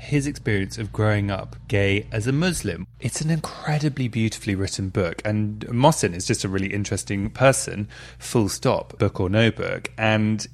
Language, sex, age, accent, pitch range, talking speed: English, male, 20-39, British, 105-130 Hz, 170 wpm